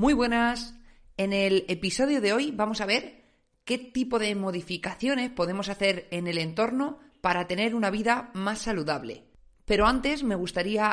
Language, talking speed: Spanish, 160 wpm